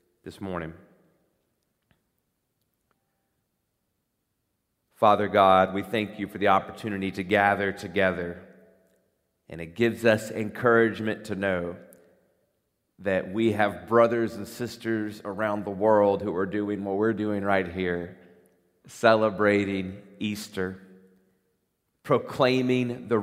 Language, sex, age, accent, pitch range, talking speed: English, male, 40-59, American, 95-120 Hz, 105 wpm